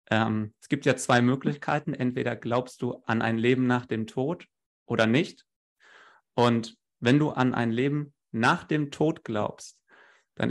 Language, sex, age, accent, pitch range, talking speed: German, male, 30-49, German, 115-145 Hz, 155 wpm